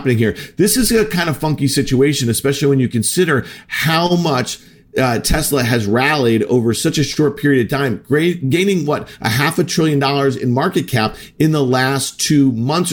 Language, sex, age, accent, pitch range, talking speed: English, male, 50-69, American, 130-160 Hz, 185 wpm